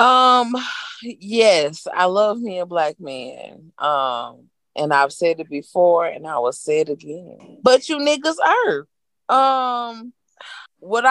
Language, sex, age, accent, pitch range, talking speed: English, female, 20-39, American, 150-210 Hz, 140 wpm